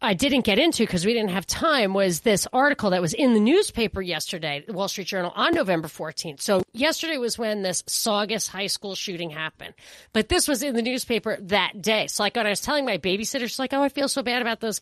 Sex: female